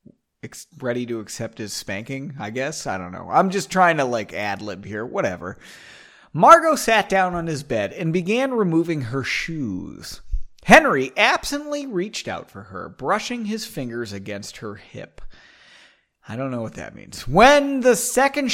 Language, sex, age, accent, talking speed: English, male, 30-49, American, 160 wpm